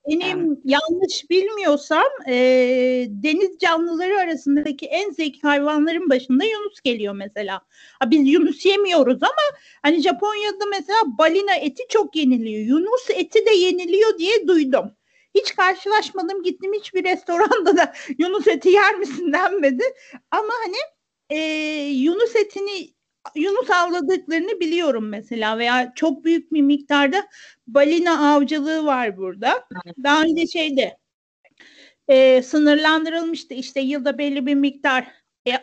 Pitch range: 280-385 Hz